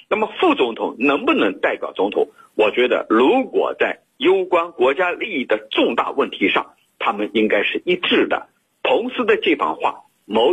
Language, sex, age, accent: Chinese, male, 50-69, native